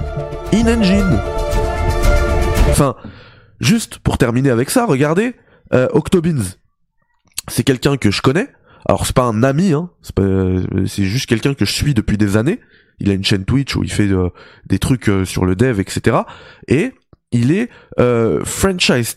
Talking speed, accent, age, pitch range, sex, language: 170 wpm, French, 20-39, 110-170 Hz, male, French